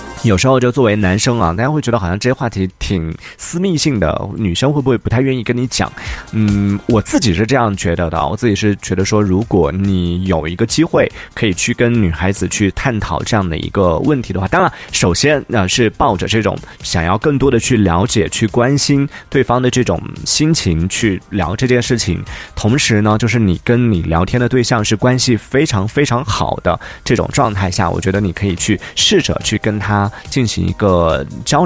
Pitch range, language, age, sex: 95-120 Hz, Chinese, 20-39, male